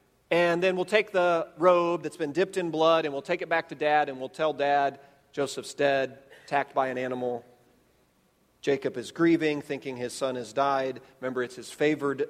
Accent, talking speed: American, 195 wpm